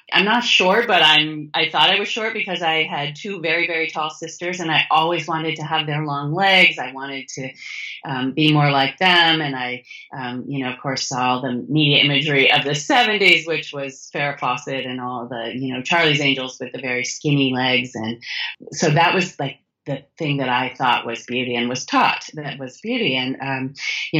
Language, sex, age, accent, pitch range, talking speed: English, female, 30-49, American, 135-160 Hz, 215 wpm